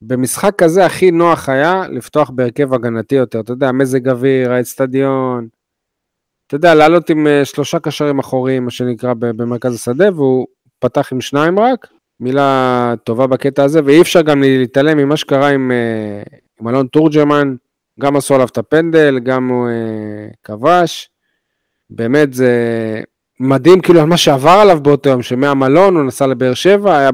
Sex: male